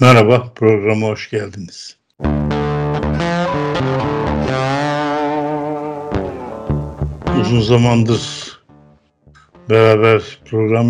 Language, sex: Turkish, male